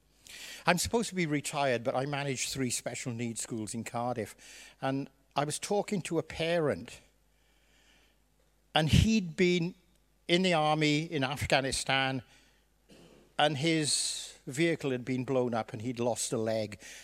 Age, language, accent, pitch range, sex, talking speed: 60-79, English, British, 130-175 Hz, male, 145 wpm